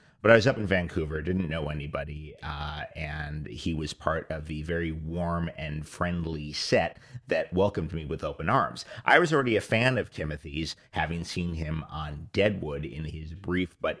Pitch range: 80-95 Hz